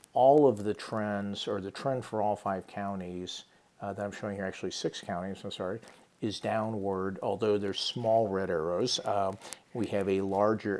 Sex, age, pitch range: male, 50-69, 100-110 Hz